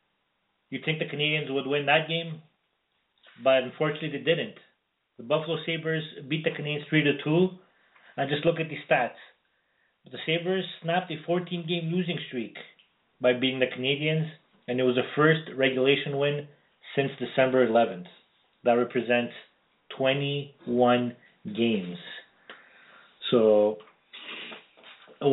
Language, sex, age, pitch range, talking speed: English, male, 30-49, 135-170 Hz, 125 wpm